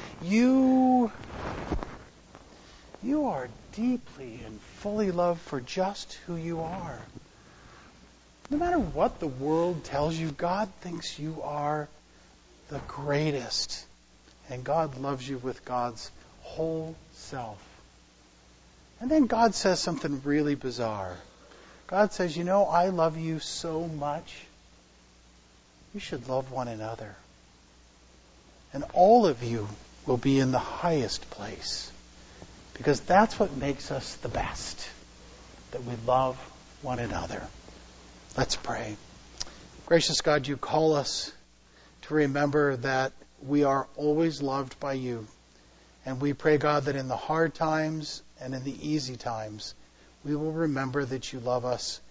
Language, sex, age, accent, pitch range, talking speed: English, male, 50-69, American, 95-160 Hz, 130 wpm